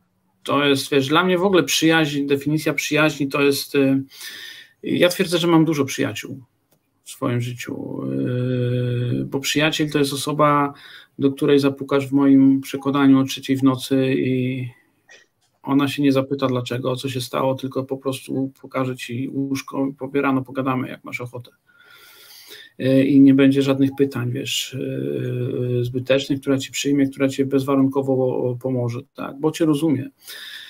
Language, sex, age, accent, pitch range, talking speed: Polish, male, 50-69, native, 130-140 Hz, 145 wpm